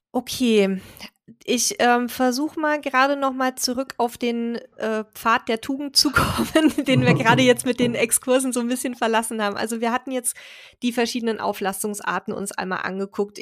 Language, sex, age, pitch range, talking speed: German, female, 20-39, 200-240 Hz, 175 wpm